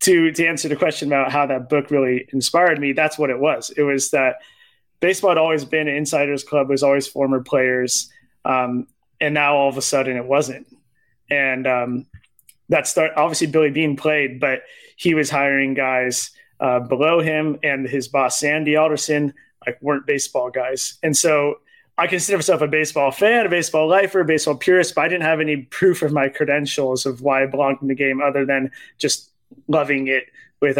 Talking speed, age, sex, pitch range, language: 195 wpm, 20-39, male, 135-160 Hz, English